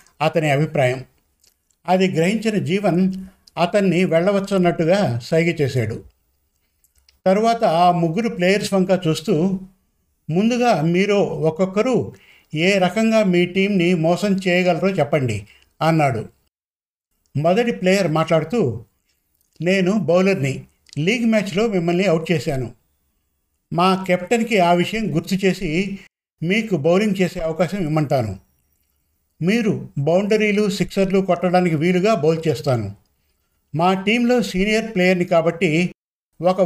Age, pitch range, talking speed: 50-69, 155-190 Hz, 100 wpm